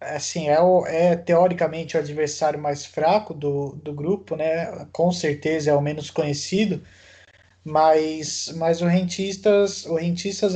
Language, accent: Portuguese, Brazilian